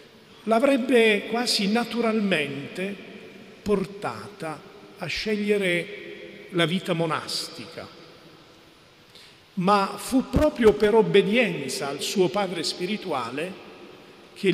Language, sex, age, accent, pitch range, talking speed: Italian, male, 50-69, native, 160-205 Hz, 80 wpm